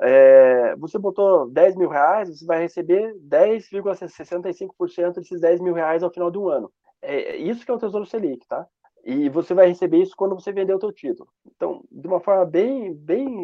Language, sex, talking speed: Portuguese, male, 200 wpm